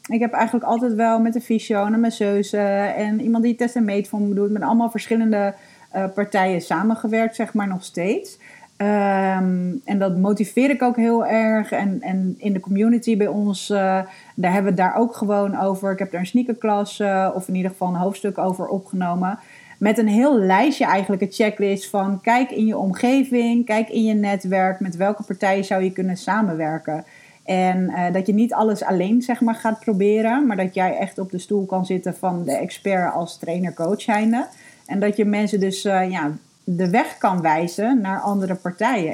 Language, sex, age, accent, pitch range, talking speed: Dutch, female, 40-59, Dutch, 190-225 Hz, 200 wpm